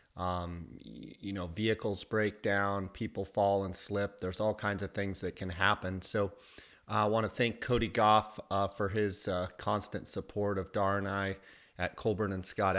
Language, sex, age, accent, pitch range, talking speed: English, male, 30-49, American, 95-110 Hz, 185 wpm